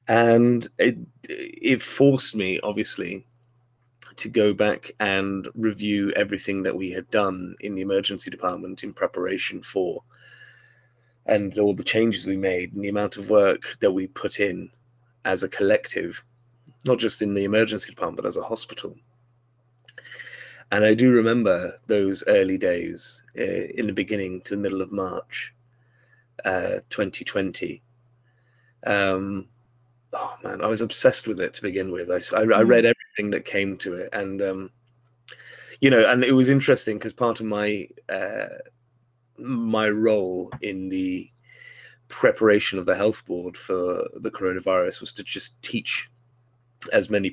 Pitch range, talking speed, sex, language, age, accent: 95-120 Hz, 150 wpm, male, English, 30-49, British